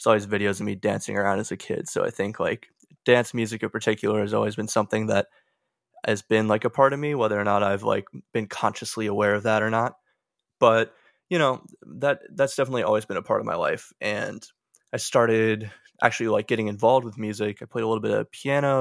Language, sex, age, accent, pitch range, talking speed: English, male, 20-39, American, 105-115 Hz, 225 wpm